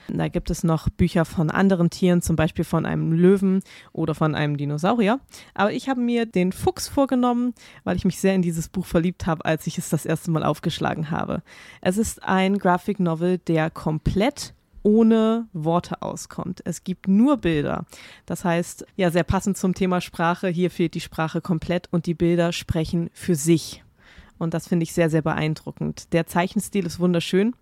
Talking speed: 185 wpm